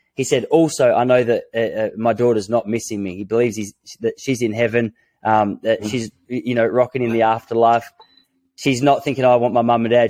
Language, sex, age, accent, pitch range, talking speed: English, male, 20-39, Australian, 115-140 Hz, 225 wpm